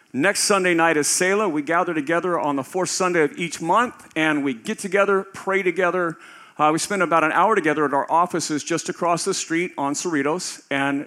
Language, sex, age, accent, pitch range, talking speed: English, male, 50-69, American, 145-180 Hz, 205 wpm